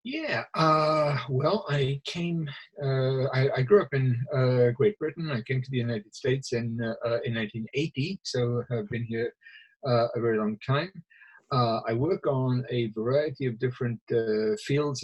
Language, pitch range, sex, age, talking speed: English, 115-145 Hz, male, 50-69, 170 wpm